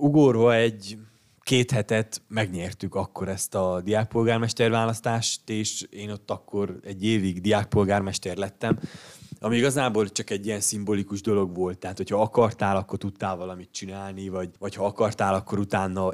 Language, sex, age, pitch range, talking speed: Hungarian, male, 20-39, 95-110 Hz, 140 wpm